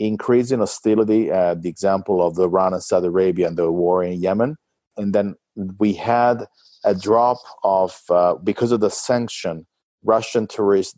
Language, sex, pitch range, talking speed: English, male, 90-115 Hz, 165 wpm